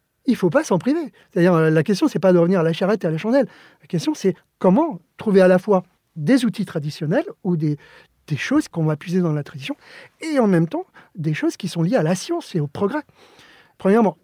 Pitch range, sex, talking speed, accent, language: 165-210 Hz, male, 245 wpm, French, French